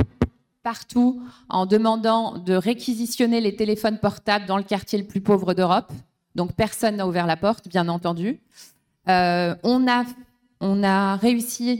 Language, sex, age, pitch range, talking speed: French, female, 30-49, 195-225 Hz, 145 wpm